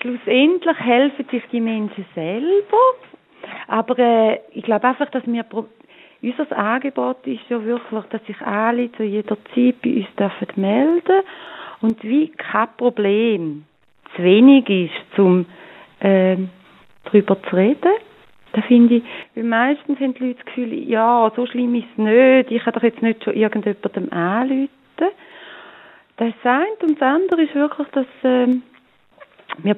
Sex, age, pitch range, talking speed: female, 30-49, 210-265 Hz, 155 wpm